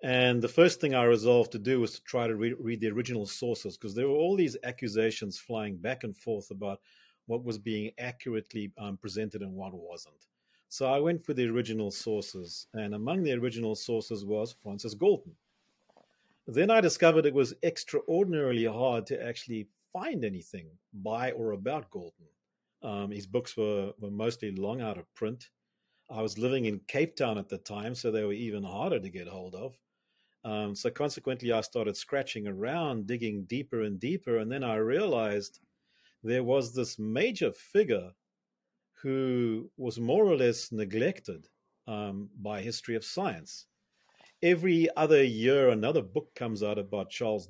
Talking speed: 170 wpm